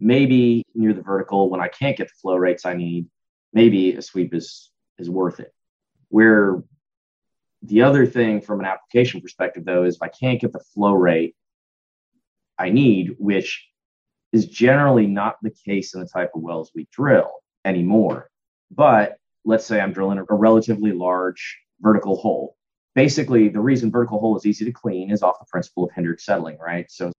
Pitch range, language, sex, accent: 90-115 Hz, English, male, American